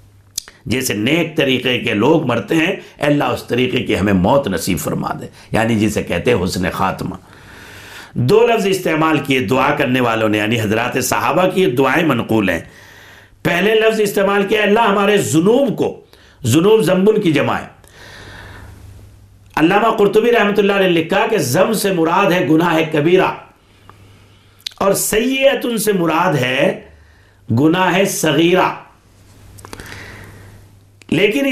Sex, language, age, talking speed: male, English, 60-79, 95 wpm